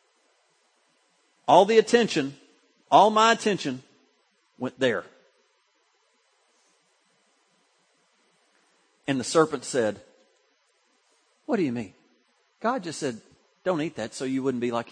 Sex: male